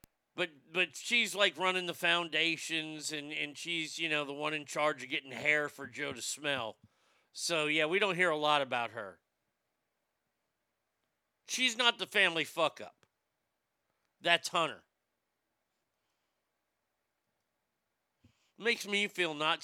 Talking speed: 130 wpm